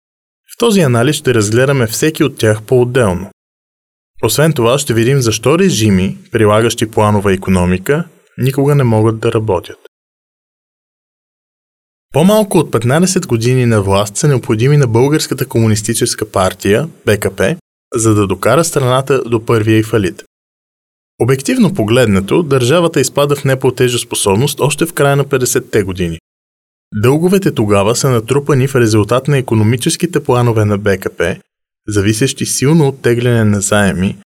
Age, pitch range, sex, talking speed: 20-39, 105-140 Hz, male, 130 wpm